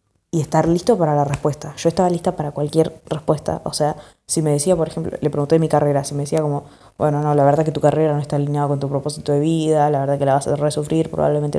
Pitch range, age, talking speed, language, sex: 150-175 Hz, 20-39, 260 wpm, Spanish, female